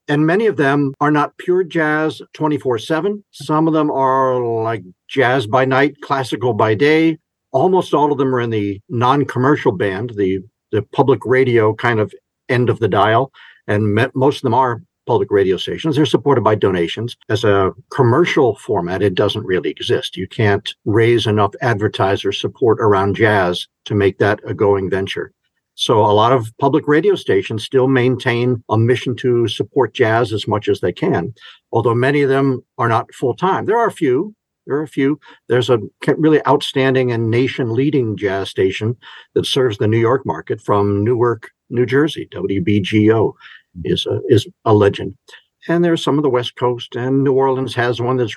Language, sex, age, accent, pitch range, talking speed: English, male, 50-69, American, 110-140 Hz, 180 wpm